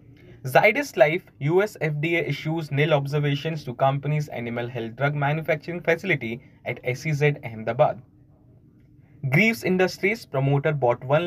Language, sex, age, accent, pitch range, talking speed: English, male, 20-39, Indian, 130-160 Hz, 115 wpm